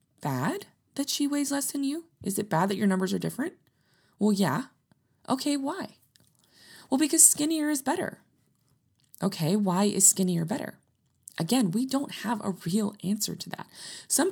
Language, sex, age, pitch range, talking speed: English, female, 20-39, 155-225 Hz, 165 wpm